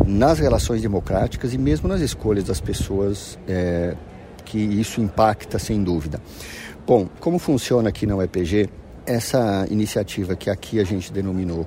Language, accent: Portuguese, Brazilian